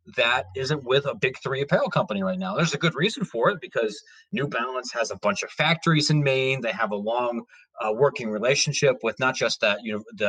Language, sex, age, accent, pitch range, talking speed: English, male, 30-49, American, 135-185 Hz, 235 wpm